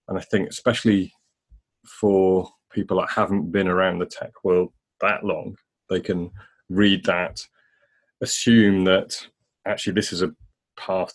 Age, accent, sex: 30-49, British, male